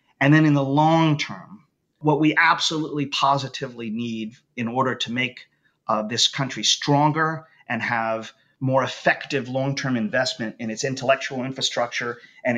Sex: male